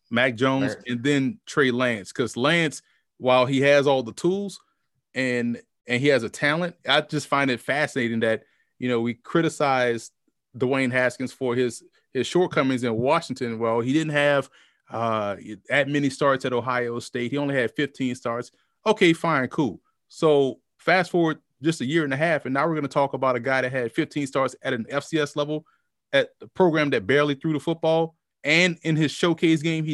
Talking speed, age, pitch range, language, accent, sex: 195 wpm, 20-39, 125-155 Hz, English, American, male